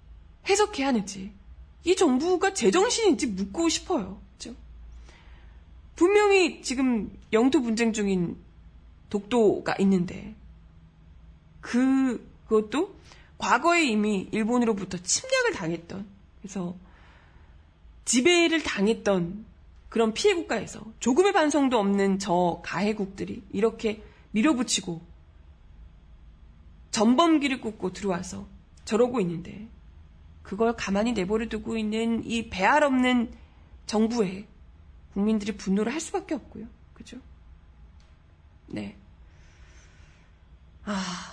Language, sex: Korean, female